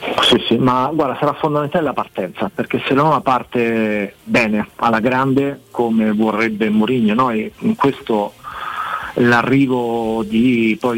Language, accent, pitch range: Italian, native, 100-125 Hz